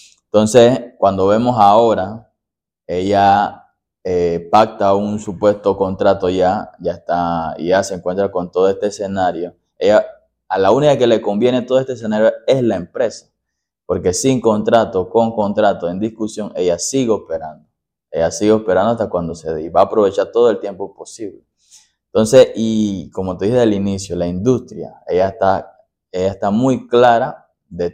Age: 20-39